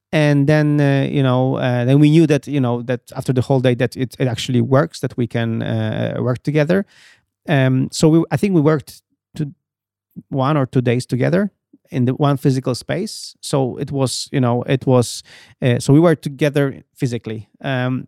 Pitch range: 125-150 Hz